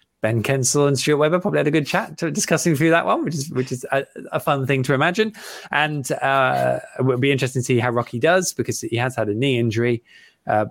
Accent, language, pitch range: British, English, 110-150 Hz